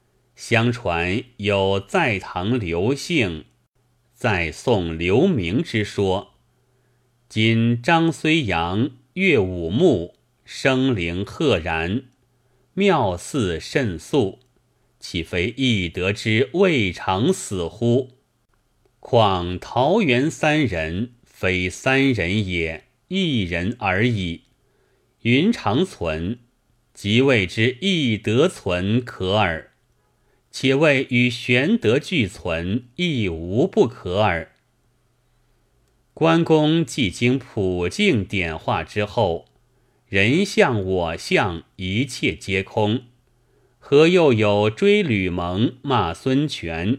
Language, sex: Chinese, male